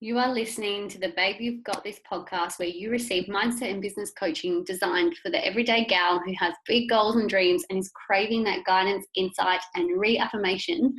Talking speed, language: 195 wpm, English